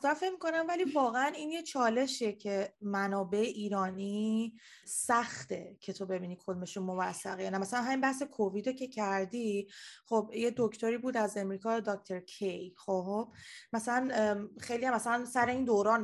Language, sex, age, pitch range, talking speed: Persian, female, 20-39, 195-250 Hz, 145 wpm